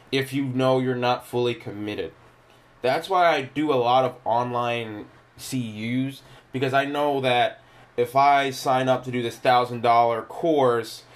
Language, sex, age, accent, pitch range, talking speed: English, male, 20-39, American, 110-130 Hz, 155 wpm